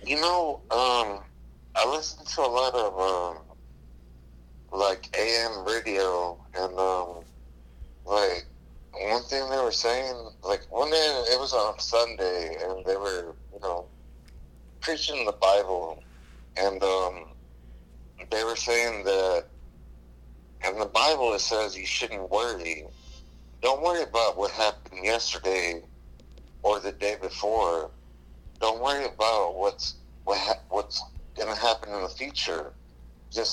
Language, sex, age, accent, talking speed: English, male, 60-79, American, 130 wpm